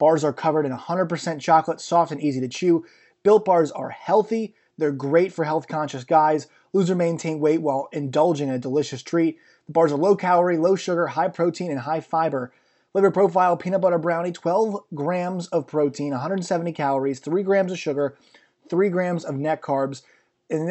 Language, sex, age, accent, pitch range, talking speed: English, male, 30-49, American, 150-180 Hz, 185 wpm